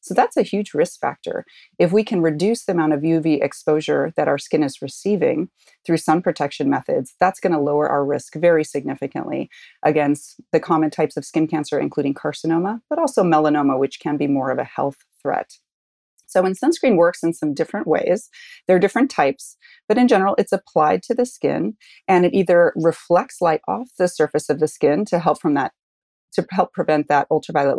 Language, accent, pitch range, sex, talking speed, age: English, American, 145-190 Hz, female, 200 wpm, 30-49